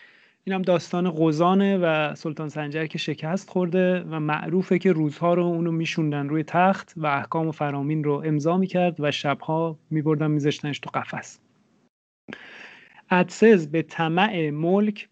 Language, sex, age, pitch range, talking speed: English, male, 30-49, 155-195 Hz, 140 wpm